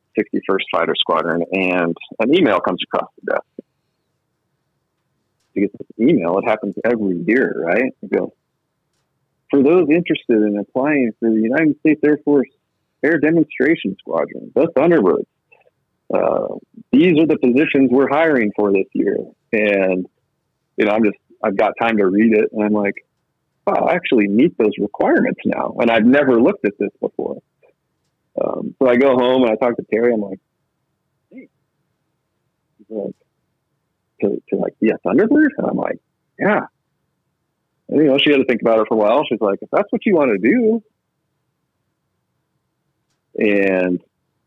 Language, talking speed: English, 165 wpm